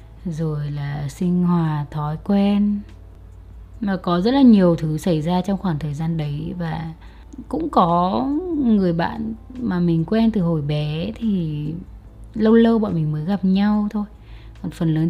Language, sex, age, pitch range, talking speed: Vietnamese, female, 20-39, 155-205 Hz, 165 wpm